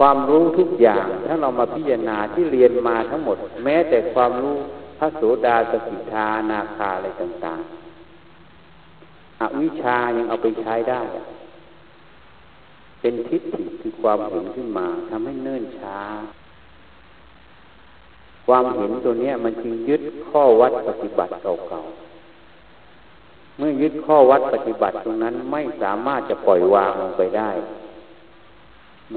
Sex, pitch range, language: male, 110-170 Hz, Thai